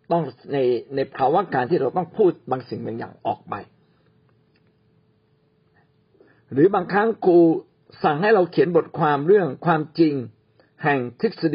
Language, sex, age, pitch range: Thai, male, 60-79, 130-175 Hz